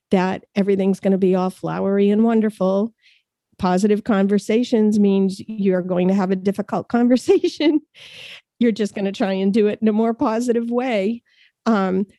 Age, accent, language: 40-59, American, English